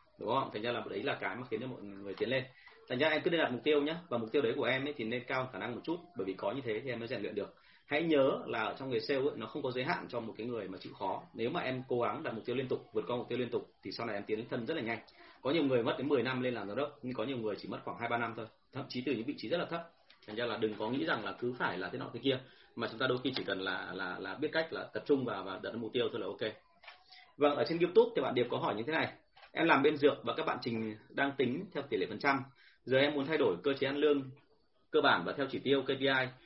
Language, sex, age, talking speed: Vietnamese, male, 30-49, 340 wpm